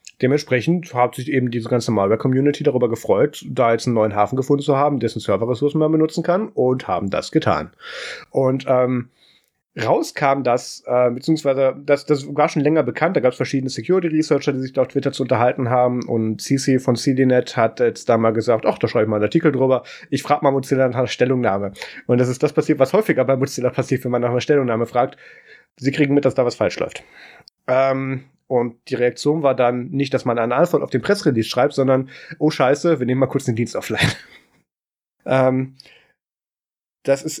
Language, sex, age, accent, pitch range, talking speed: German, male, 30-49, German, 120-140 Hz, 205 wpm